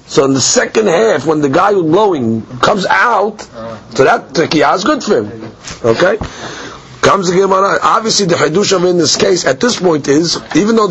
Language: English